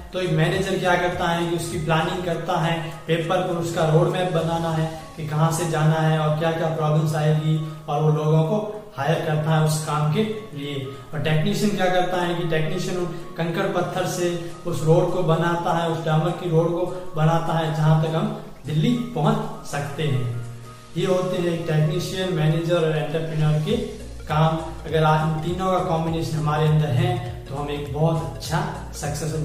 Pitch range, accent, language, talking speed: 160-180 Hz, native, Hindi, 185 wpm